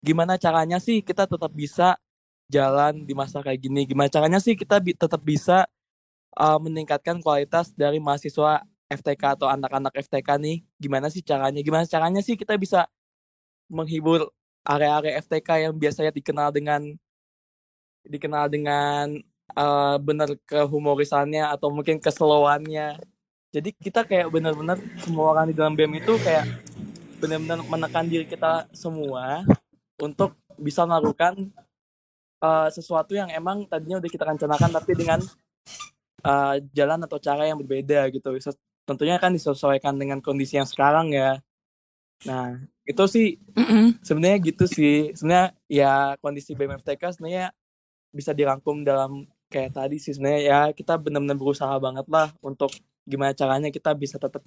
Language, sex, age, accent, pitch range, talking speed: Indonesian, male, 20-39, native, 140-165 Hz, 135 wpm